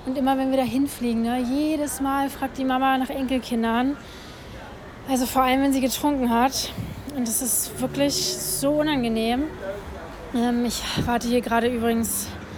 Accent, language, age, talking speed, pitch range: German, German, 20-39, 155 wpm, 235-265 Hz